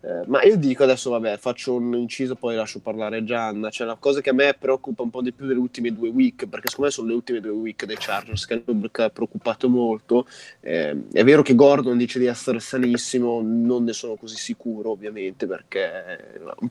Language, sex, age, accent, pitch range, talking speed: Italian, male, 20-39, native, 110-135 Hz, 210 wpm